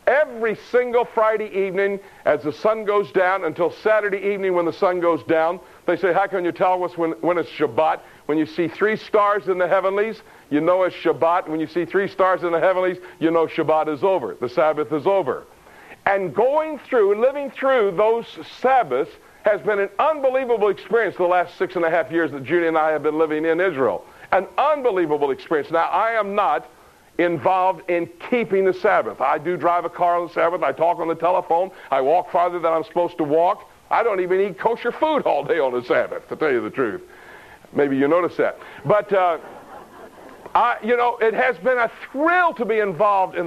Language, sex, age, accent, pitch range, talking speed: English, male, 60-79, American, 175-260 Hz, 210 wpm